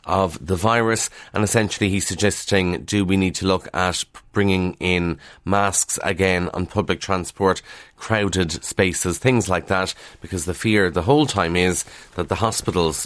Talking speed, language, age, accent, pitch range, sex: 160 wpm, English, 30-49, Irish, 90-110 Hz, male